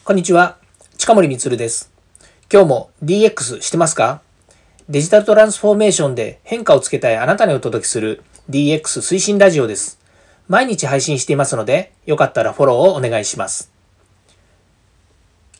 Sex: male